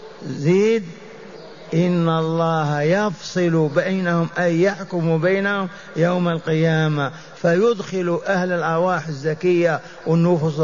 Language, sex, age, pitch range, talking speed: Arabic, male, 50-69, 155-185 Hz, 85 wpm